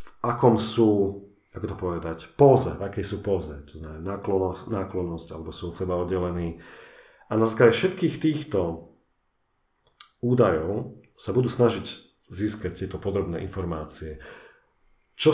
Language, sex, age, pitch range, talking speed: Slovak, male, 40-59, 90-120 Hz, 120 wpm